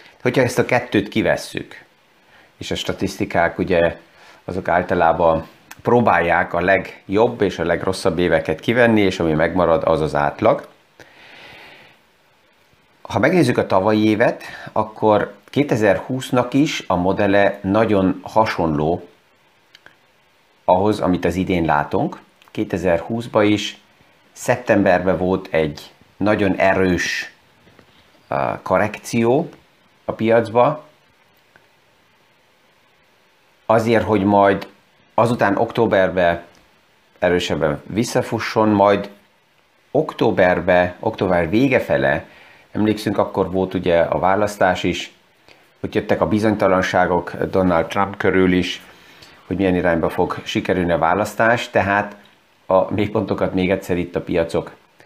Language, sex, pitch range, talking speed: Hungarian, male, 90-110 Hz, 100 wpm